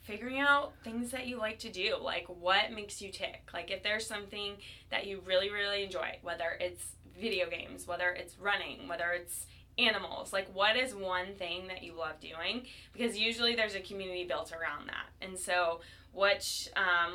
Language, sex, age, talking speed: English, female, 20-39, 185 wpm